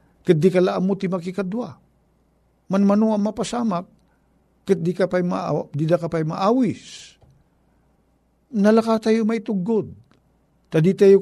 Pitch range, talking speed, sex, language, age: 115-190 Hz, 110 wpm, male, Filipino, 50-69